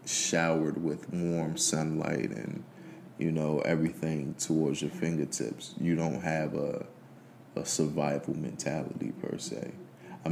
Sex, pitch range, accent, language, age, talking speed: male, 75-90 Hz, American, English, 20-39, 120 wpm